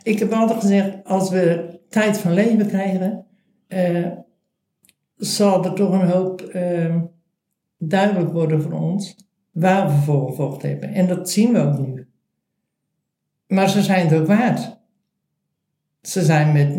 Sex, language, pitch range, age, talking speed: male, Dutch, 160-195 Hz, 60-79, 145 wpm